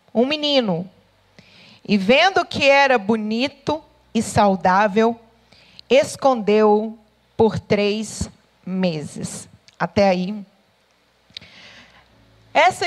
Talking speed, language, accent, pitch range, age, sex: 75 wpm, Portuguese, Brazilian, 210-285 Hz, 40-59, female